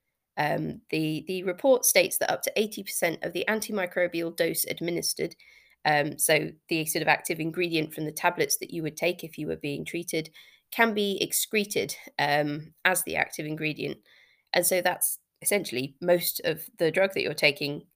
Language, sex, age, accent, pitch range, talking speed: English, female, 20-39, British, 155-185 Hz, 175 wpm